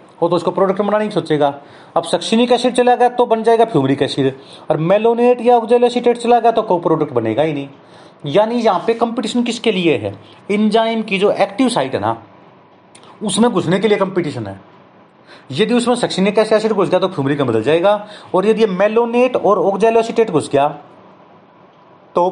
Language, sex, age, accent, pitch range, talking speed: Hindi, male, 30-49, native, 145-215 Hz, 80 wpm